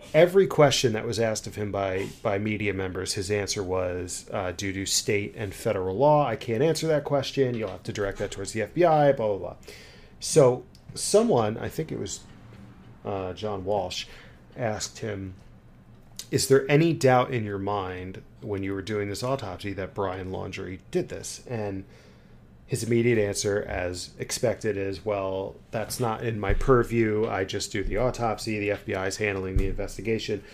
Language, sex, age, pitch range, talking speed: English, male, 30-49, 95-125 Hz, 175 wpm